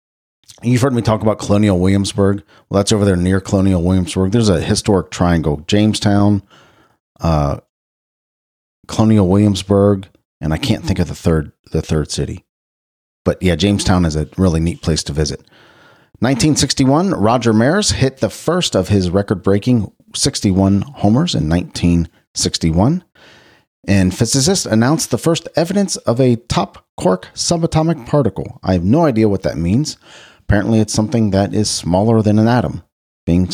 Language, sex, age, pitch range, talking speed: English, male, 40-59, 85-115 Hz, 150 wpm